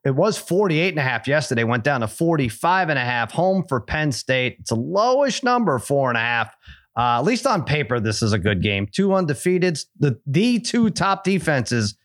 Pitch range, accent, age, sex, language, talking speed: 120-170 Hz, American, 30-49, male, English, 215 wpm